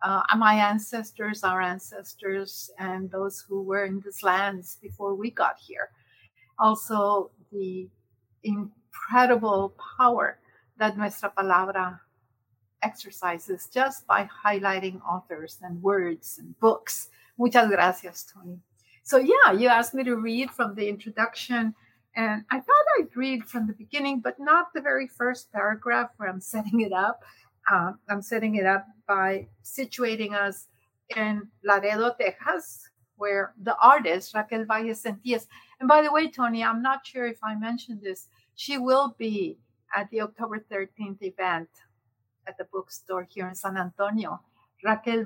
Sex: female